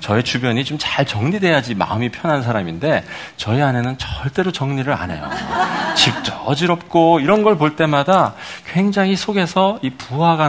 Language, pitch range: Korean, 105-175 Hz